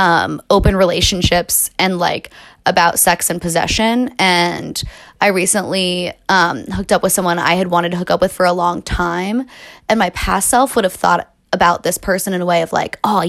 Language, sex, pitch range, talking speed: English, female, 175-210 Hz, 200 wpm